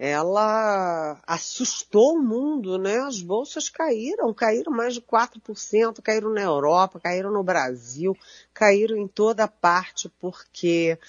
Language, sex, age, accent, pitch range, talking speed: Portuguese, female, 40-59, Brazilian, 160-215 Hz, 125 wpm